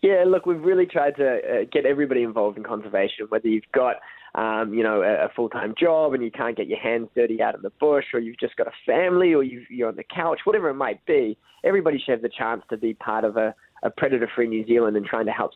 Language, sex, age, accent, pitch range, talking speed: English, male, 20-39, Australian, 115-150 Hz, 260 wpm